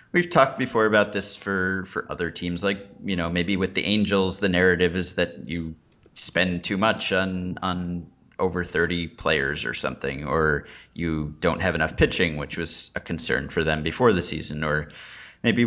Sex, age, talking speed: male, 30-49, 185 wpm